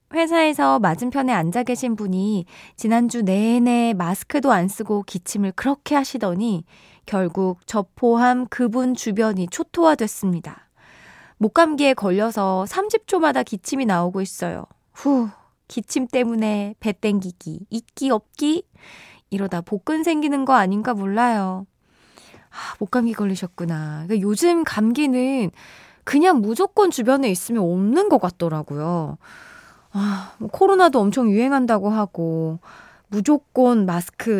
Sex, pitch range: female, 190-270 Hz